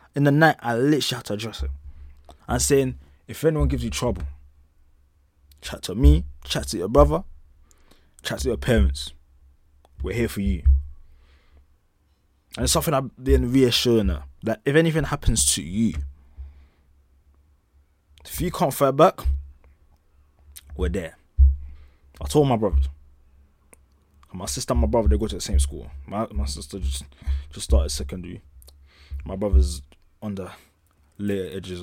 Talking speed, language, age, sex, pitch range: 150 wpm, English, 20-39, male, 70-100 Hz